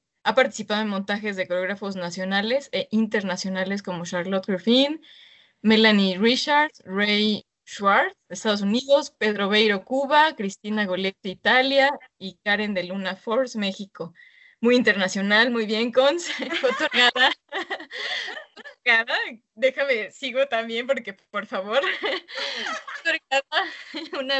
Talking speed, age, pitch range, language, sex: 115 wpm, 20-39, 195-260 Hz, Spanish, female